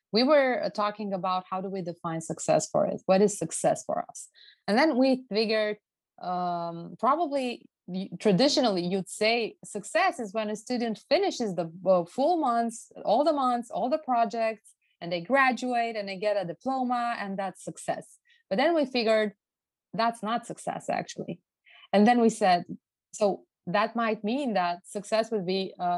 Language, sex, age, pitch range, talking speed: English, female, 20-39, 185-250 Hz, 165 wpm